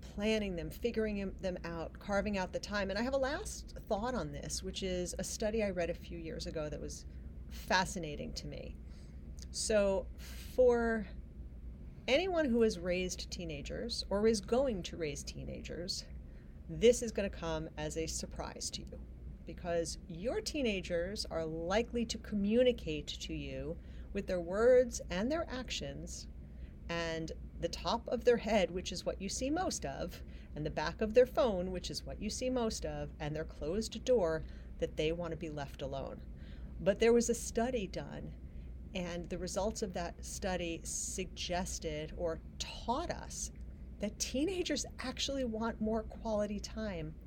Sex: female